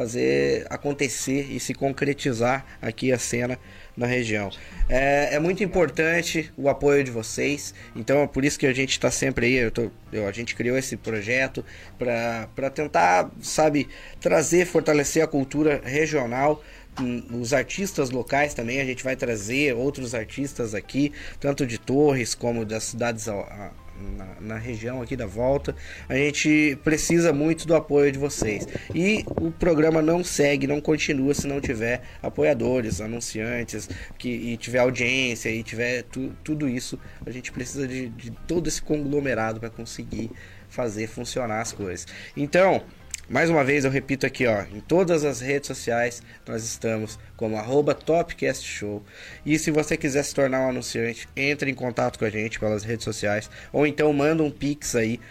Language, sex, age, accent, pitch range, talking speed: Portuguese, male, 20-39, Brazilian, 115-145 Hz, 165 wpm